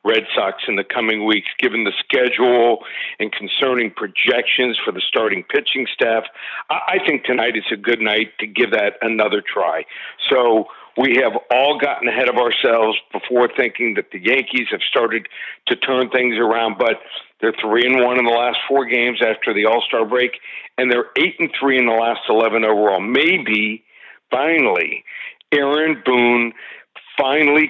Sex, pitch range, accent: male, 115-135 Hz, American